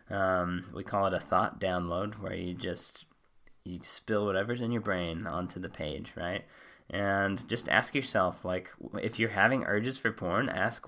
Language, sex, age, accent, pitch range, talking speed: English, male, 20-39, American, 90-110 Hz, 175 wpm